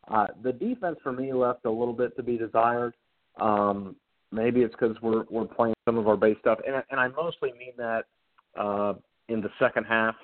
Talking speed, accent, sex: 210 wpm, American, male